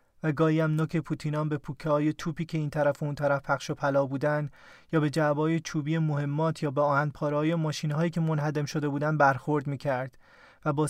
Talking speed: 205 wpm